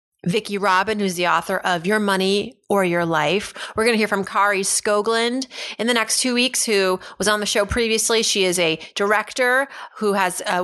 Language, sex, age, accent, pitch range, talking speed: English, female, 30-49, American, 185-230 Hz, 205 wpm